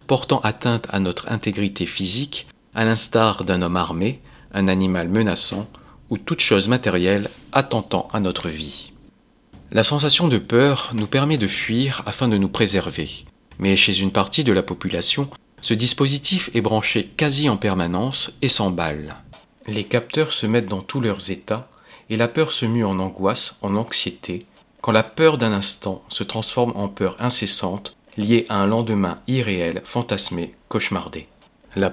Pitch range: 95-120 Hz